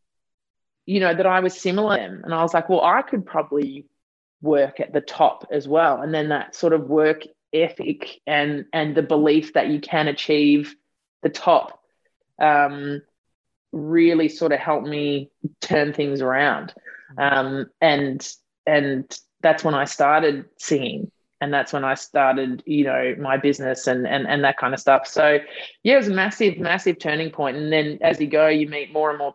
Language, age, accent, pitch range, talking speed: English, 20-39, Australian, 145-170 Hz, 185 wpm